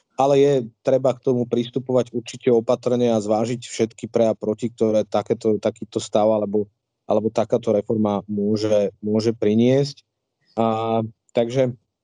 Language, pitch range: Slovak, 120-145 Hz